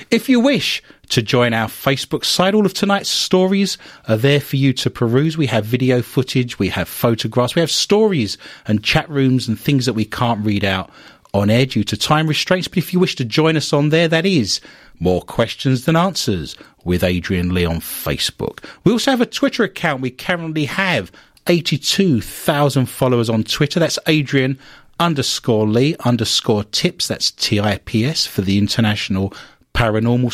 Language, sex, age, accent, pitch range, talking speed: English, male, 40-59, British, 115-155 Hz, 175 wpm